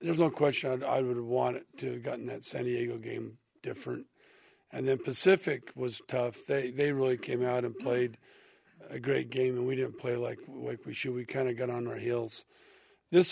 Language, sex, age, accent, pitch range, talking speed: English, male, 50-69, American, 125-150 Hz, 210 wpm